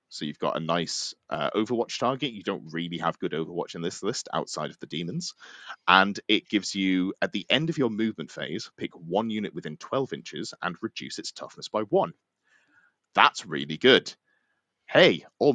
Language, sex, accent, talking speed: English, male, British, 190 wpm